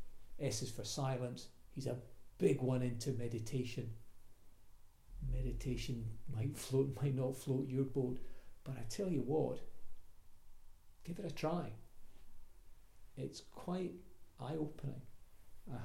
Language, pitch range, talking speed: English, 110-135 Hz, 115 wpm